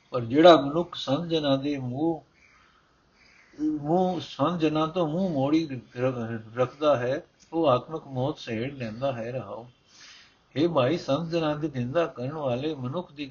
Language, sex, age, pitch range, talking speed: Punjabi, male, 60-79, 125-160 Hz, 135 wpm